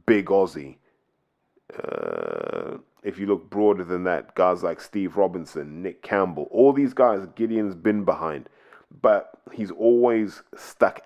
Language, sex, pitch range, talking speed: English, male, 90-115 Hz, 135 wpm